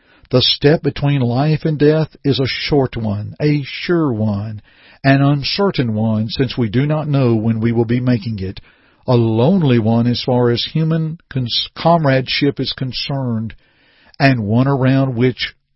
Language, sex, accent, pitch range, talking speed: English, male, American, 120-155 Hz, 155 wpm